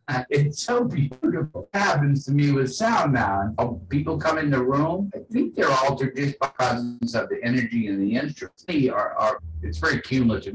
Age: 50-69